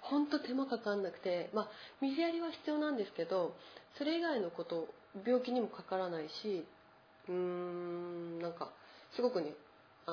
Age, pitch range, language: 40-59, 165-220 Hz, Japanese